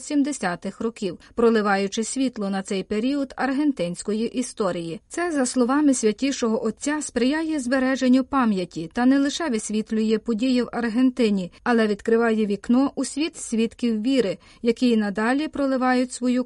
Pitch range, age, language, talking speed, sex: 215-270 Hz, 30-49, Ukrainian, 130 wpm, female